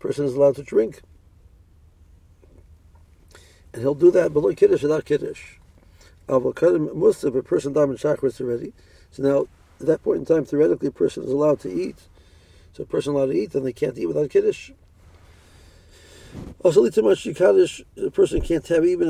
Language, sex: English, male